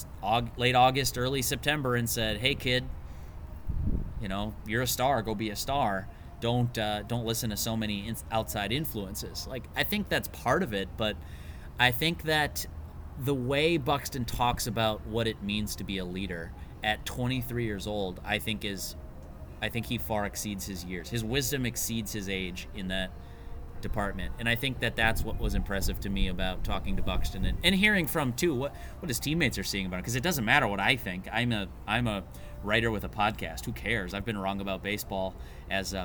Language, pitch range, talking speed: English, 95-125 Hz, 205 wpm